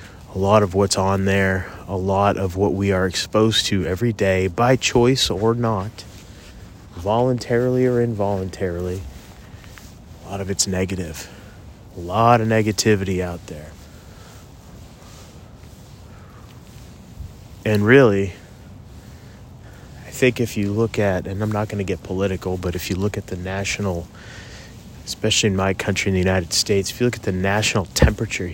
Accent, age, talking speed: American, 30-49, 150 wpm